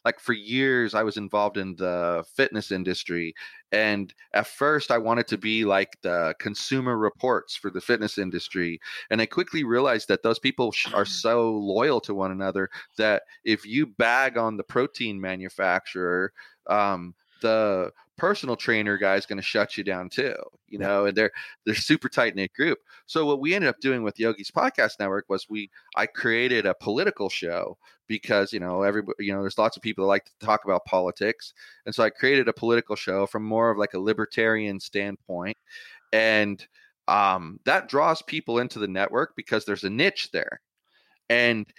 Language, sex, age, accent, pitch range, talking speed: English, male, 30-49, American, 100-115 Hz, 185 wpm